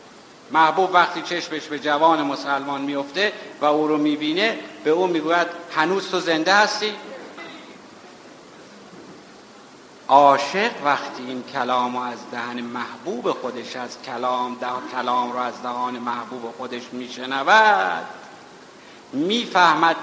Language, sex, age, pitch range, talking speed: Persian, male, 60-79, 140-185 Hz, 110 wpm